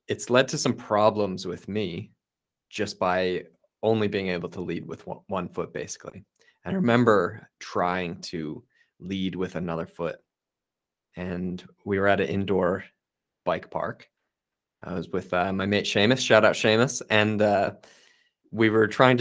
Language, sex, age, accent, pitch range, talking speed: English, male, 20-39, American, 100-125 Hz, 160 wpm